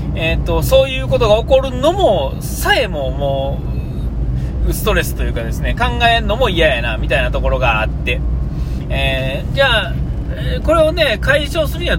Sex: male